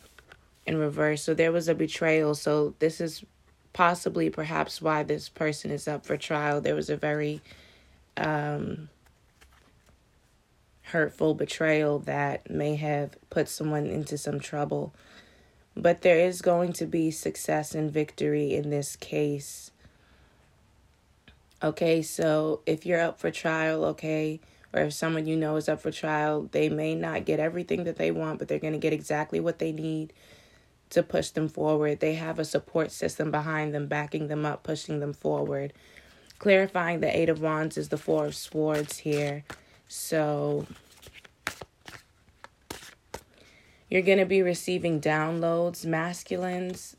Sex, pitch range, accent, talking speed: female, 145-160 Hz, American, 145 wpm